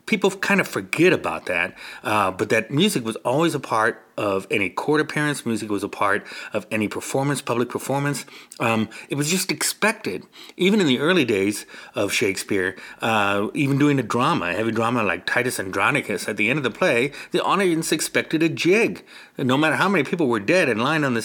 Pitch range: 105-140 Hz